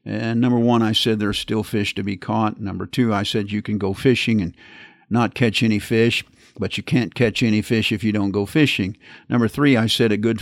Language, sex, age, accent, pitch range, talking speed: English, male, 50-69, American, 105-125 Hz, 235 wpm